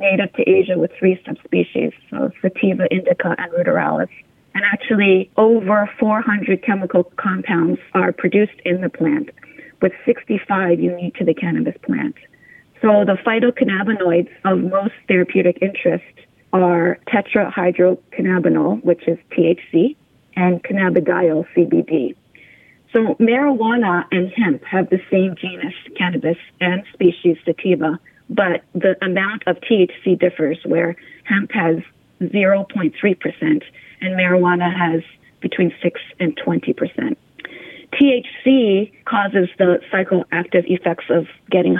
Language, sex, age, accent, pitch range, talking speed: English, female, 30-49, American, 175-210 Hz, 115 wpm